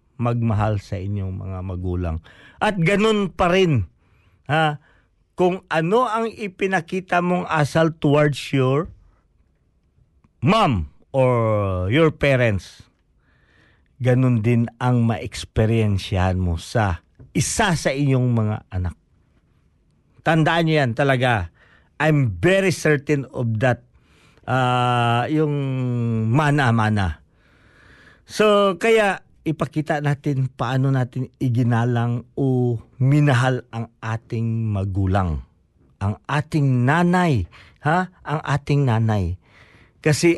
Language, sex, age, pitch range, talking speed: Filipino, male, 50-69, 110-160 Hz, 95 wpm